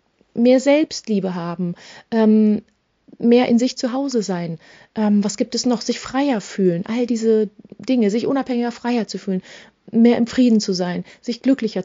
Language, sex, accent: German, female, German